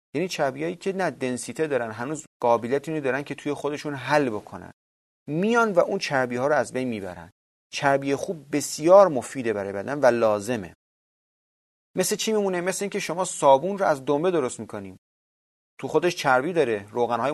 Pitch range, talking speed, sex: 115-170 Hz, 165 wpm, male